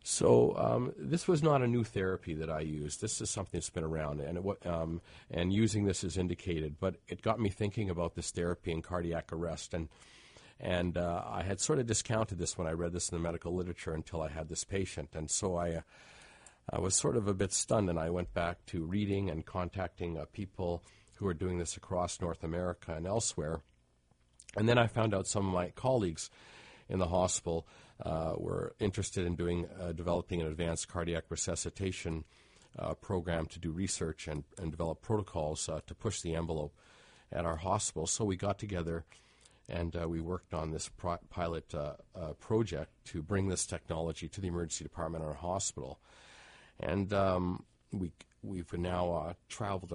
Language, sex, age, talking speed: English, male, 50-69, 195 wpm